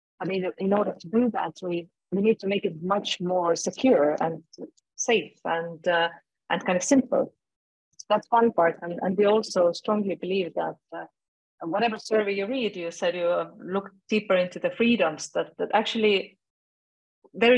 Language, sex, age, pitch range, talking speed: English, female, 30-49, 175-225 Hz, 180 wpm